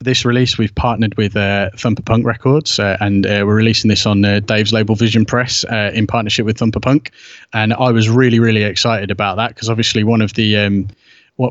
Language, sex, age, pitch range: English, male, 20-39, 105-125 Hz